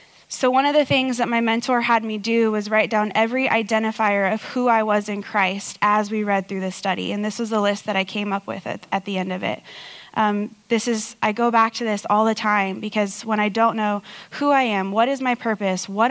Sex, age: female, 20-39